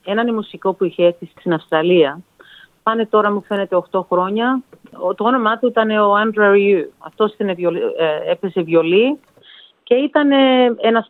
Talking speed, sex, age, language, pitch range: 140 wpm, female, 40-59, Greek, 180-240 Hz